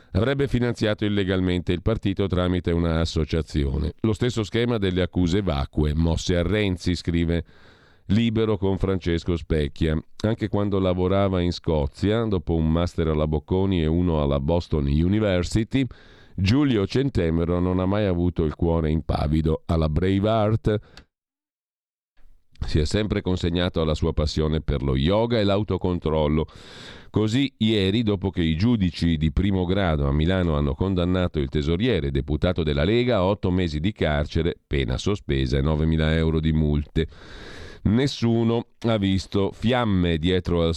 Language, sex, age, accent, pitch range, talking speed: Italian, male, 40-59, native, 80-105 Hz, 140 wpm